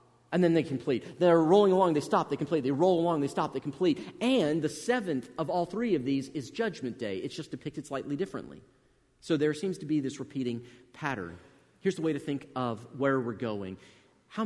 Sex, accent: male, American